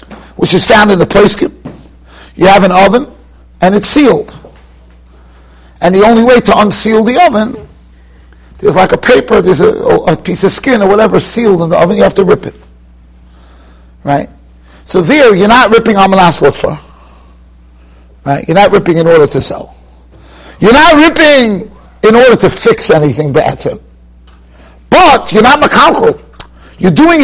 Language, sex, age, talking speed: English, male, 50-69, 165 wpm